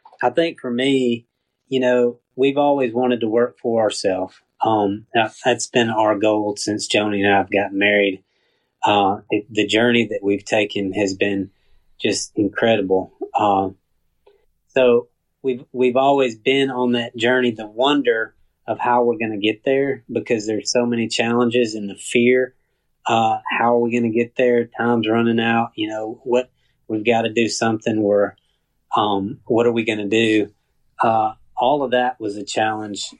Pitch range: 105-125 Hz